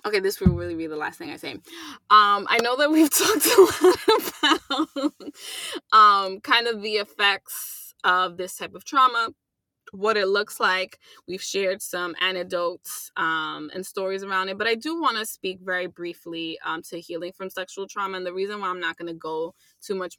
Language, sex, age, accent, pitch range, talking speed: English, female, 20-39, American, 180-230 Hz, 200 wpm